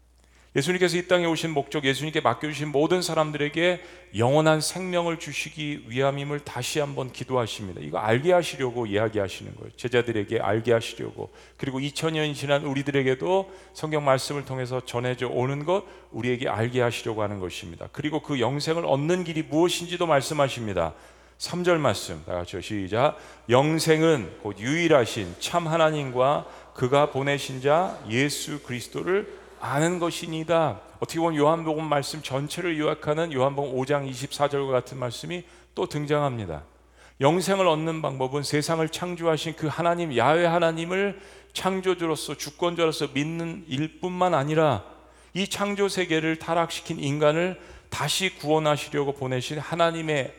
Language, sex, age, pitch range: Korean, male, 40-59, 125-165 Hz